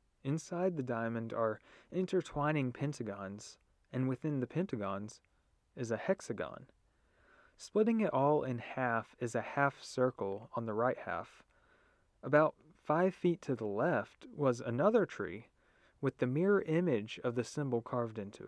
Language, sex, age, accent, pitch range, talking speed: English, male, 20-39, American, 105-140 Hz, 145 wpm